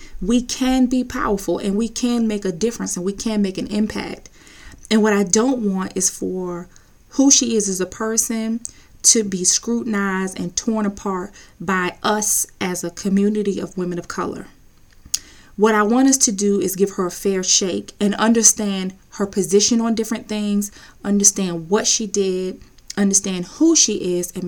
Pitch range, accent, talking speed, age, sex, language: 190-225 Hz, American, 175 wpm, 20-39, female, English